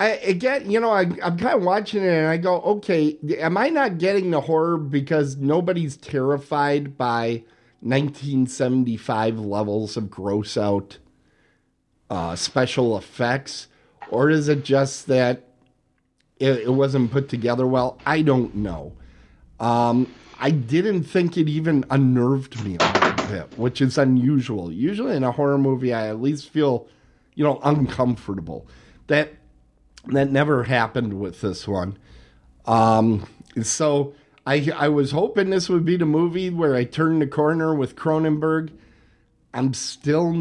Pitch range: 120-155 Hz